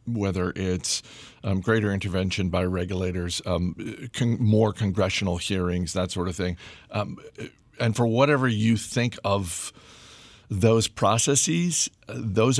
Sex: male